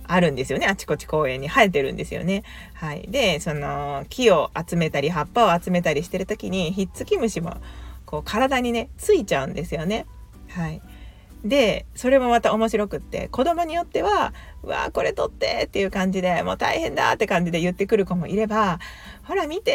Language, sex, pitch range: Japanese, female, 175-260 Hz